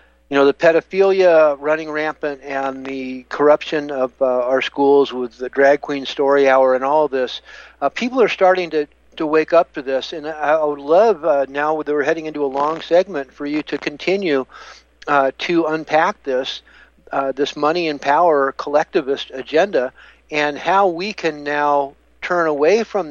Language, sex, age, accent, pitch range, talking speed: English, male, 60-79, American, 135-165 Hz, 175 wpm